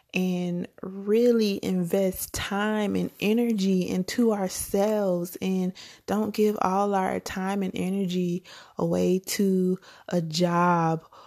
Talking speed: 105 wpm